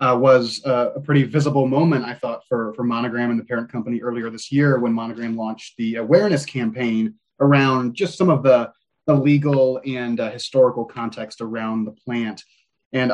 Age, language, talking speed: 30-49, English, 185 wpm